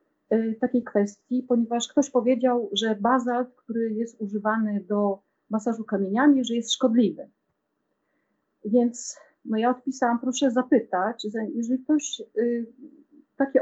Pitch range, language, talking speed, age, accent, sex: 220-260 Hz, Polish, 115 wpm, 40-59, native, female